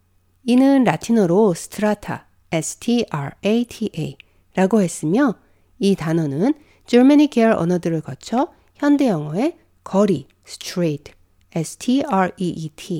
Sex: female